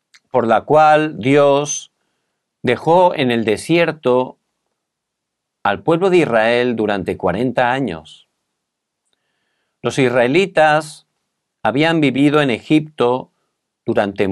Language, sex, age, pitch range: Korean, male, 50-69, 115-160 Hz